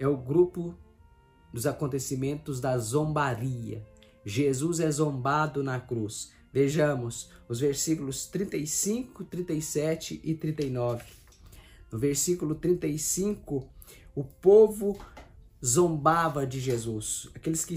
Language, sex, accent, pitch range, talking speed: Portuguese, male, Brazilian, 120-160 Hz, 100 wpm